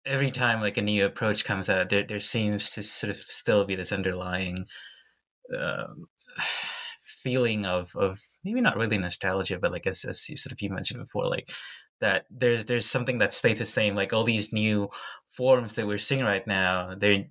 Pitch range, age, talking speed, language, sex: 100-135 Hz, 20-39, 195 wpm, English, male